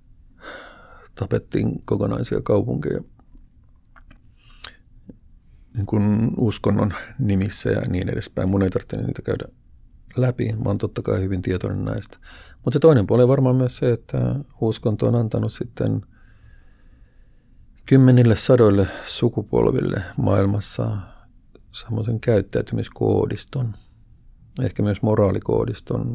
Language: Finnish